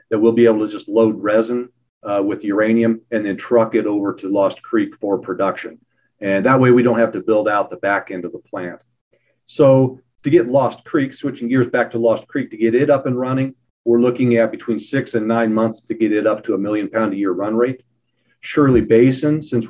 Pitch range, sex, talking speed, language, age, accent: 110-130 Hz, male, 230 wpm, English, 40-59, American